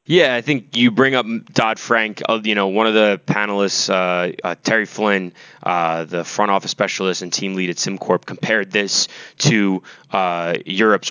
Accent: American